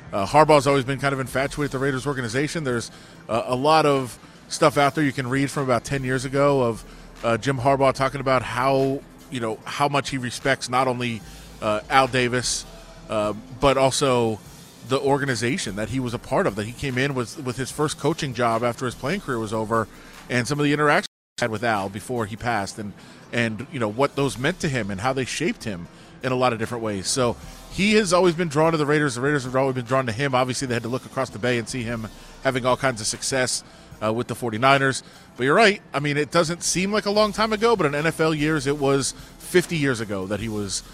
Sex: male